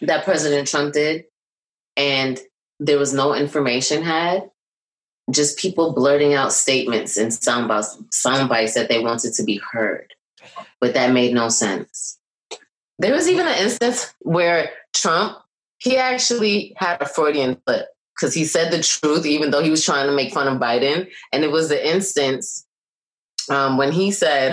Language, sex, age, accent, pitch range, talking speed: English, female, 20-39, American, 135-170 Hz, 165 wpm